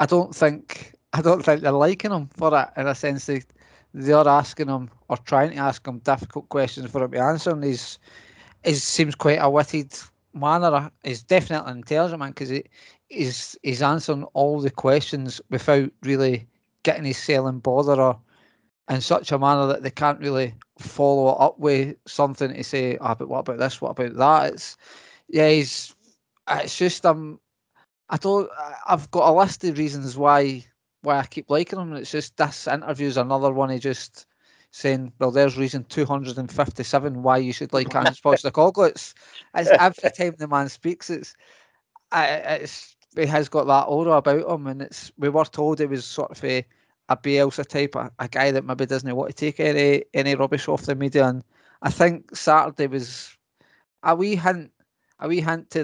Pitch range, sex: 135-150 Hz, male